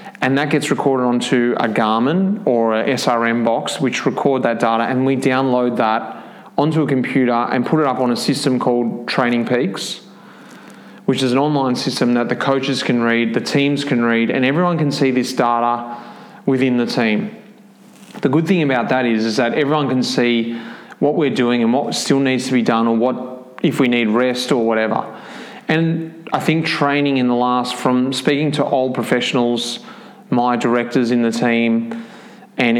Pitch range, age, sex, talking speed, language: 120-155 Hz, 30-49, male, 185 wpm, English